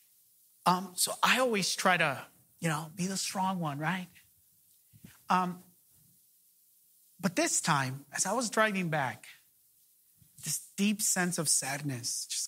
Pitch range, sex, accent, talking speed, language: 135-175 Hz, male, American, 135 wpm, English